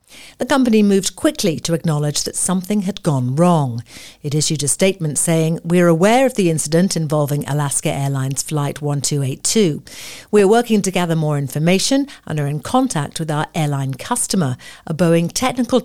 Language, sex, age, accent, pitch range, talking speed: English, female, 50-69, British, 145-200 Hz, 165 wpm